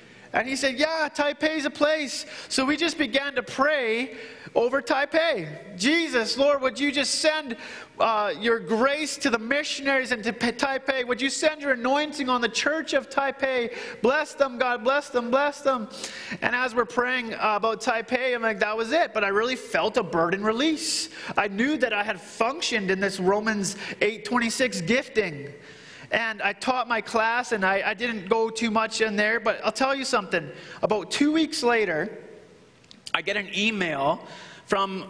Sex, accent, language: male, American, English